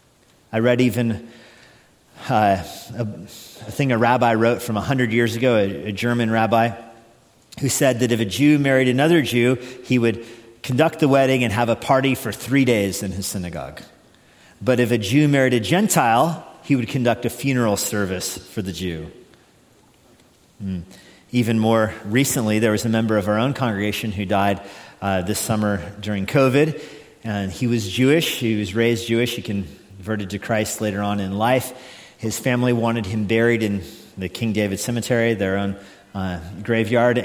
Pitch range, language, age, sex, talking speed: 100-120 Hz, English, 40-59, male, 170 wpm